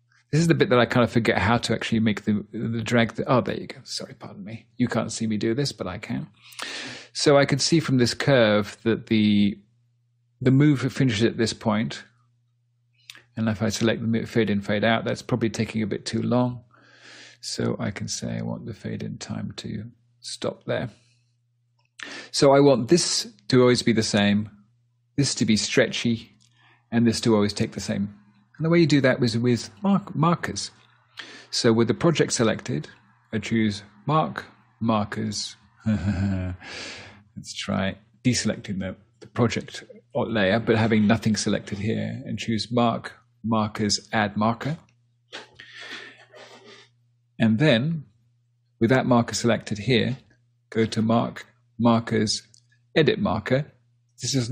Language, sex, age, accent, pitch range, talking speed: English, male, 40-59, British, 110-120 Hz, 165 wpm